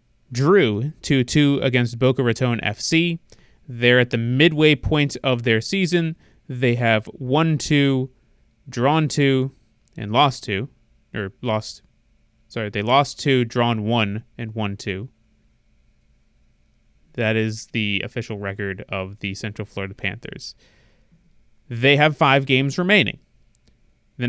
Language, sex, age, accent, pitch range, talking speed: English, male, 20-39, American, 110-140 Hz, 125 wpm